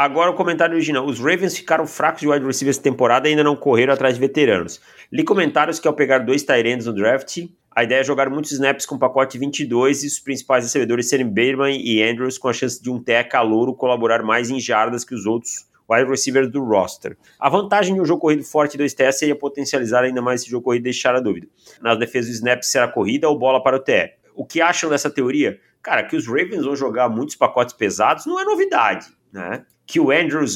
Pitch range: 120-150 Hz